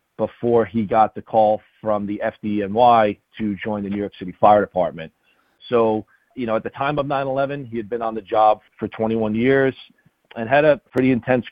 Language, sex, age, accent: English, male, 40-59, American